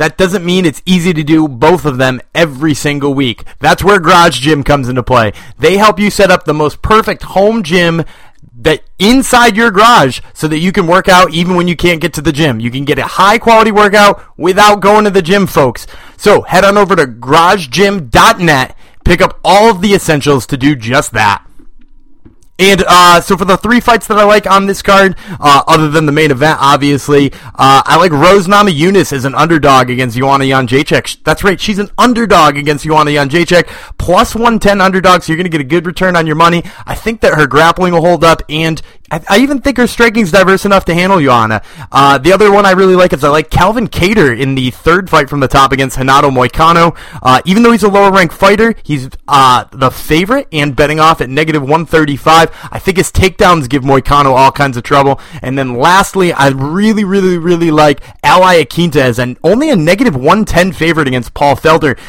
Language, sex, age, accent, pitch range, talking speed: English, male, 30-49, American, 140-195 Hz, 210 wpm